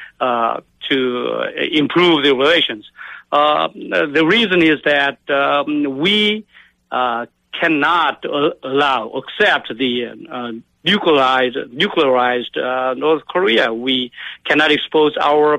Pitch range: 130-160 Hz